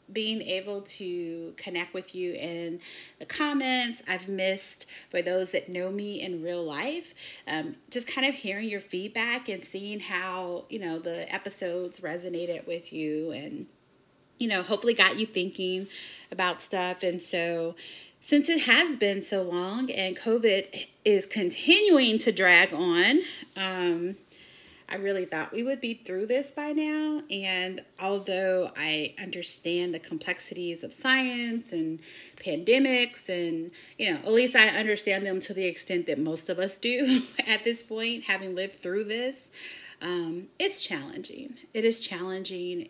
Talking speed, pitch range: 155 wpm, 175-230 Hz